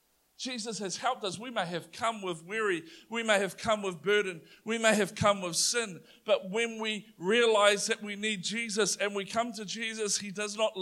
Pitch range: 195-235 Hz